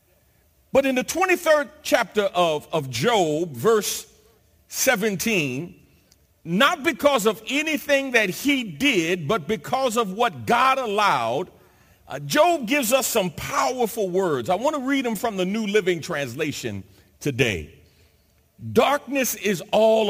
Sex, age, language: male, 50-69, English